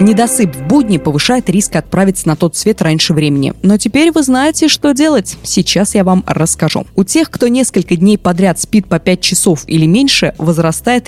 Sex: female